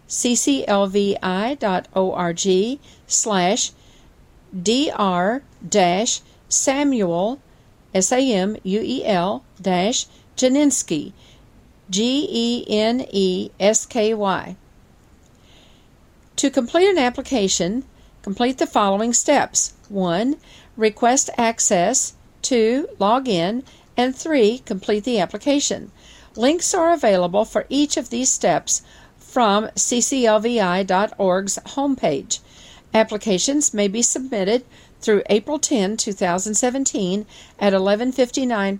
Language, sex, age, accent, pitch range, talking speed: English, female, 50-69, American, 195-260 Hz, 90 wpm